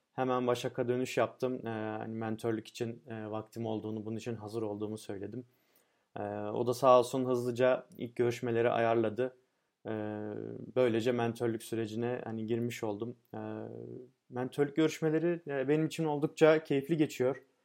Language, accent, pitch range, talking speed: Turkish, native, 110-125 Hz, 140 wpm